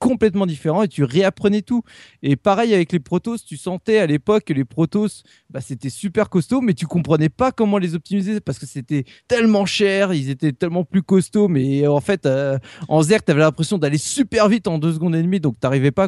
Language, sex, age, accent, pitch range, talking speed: French, male, 20-39, French, 140-200 Hz, 225 wpm